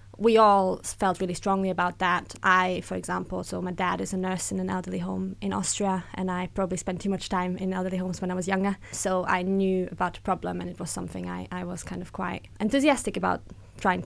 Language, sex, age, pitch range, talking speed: English, female, 20-39, 185-205 Hz, 235 wpm